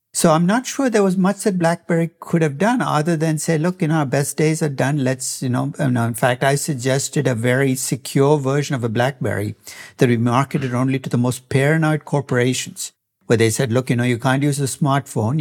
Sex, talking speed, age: male, 220 wpm, 60-79